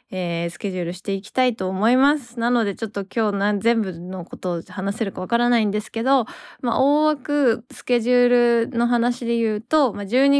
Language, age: Japanese, 20-39